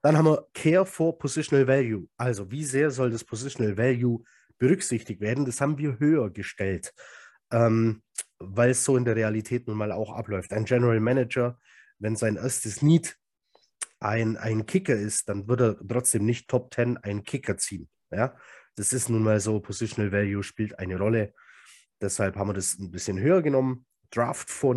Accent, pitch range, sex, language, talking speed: German, 105-125 Hz, male, German, 180 wpm